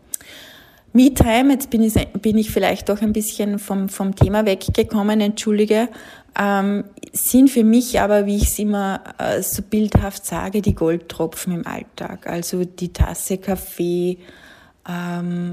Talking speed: 135 wpm